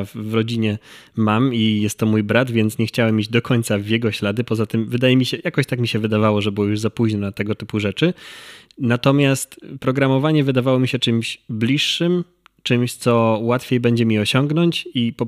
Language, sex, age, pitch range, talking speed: Polish, male, 20-39, 110-120 Hz, 200 wpm